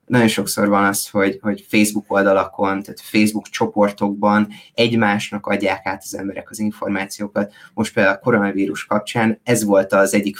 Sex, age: male, 20-39